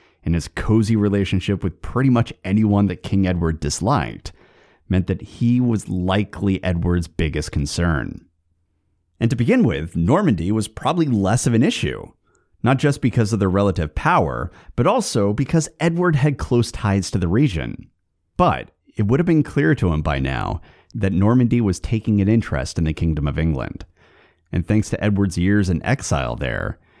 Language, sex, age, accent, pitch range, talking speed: English, male, 30-49, American, 85-110 Hz, 170 wpm